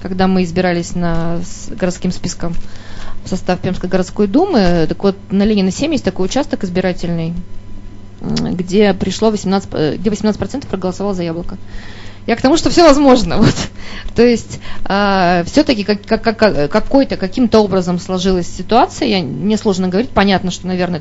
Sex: female